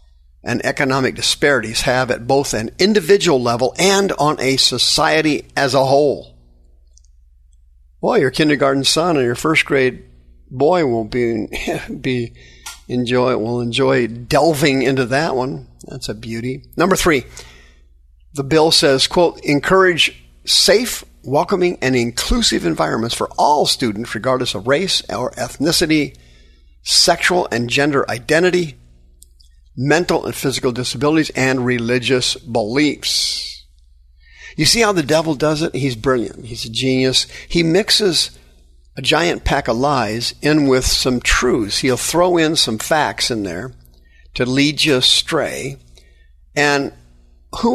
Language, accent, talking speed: English, American, 135 wpm